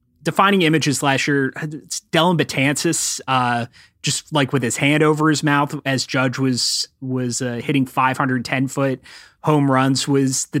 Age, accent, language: 30-49, American, English